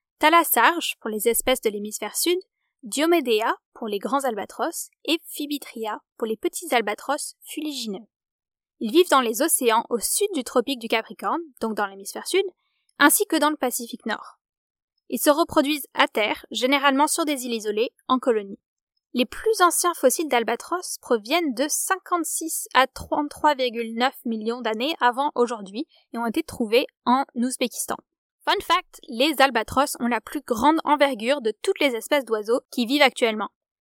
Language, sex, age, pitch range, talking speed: French, female, 10-29, 240-325 Hz, 160 wpm